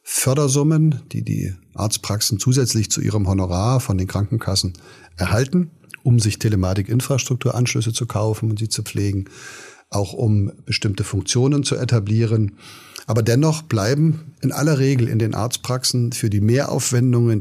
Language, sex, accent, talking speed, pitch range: German, male, German, 135 wpm, 105-130 Hz